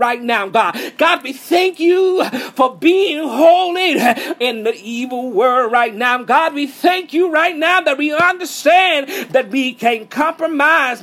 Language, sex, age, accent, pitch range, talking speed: English, male, 40-59, American, 265-320 Hz, 160 wpm